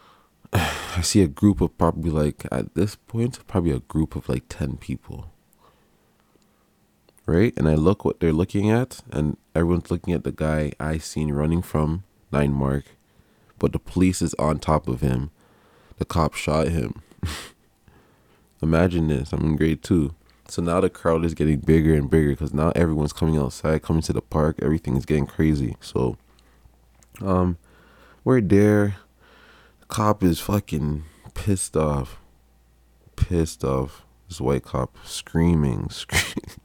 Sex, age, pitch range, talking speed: male, 20-39, 75-95 Hz, 150 wpm